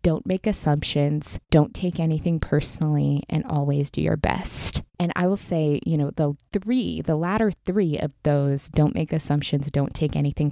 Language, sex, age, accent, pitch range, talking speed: English, female, 20-39, American, 145-180 Hz, 175 wpm